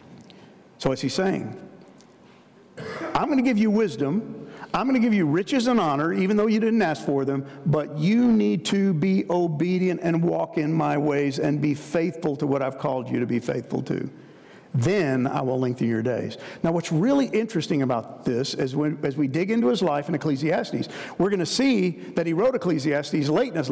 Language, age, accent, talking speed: English, 50-69, American, 205 wpm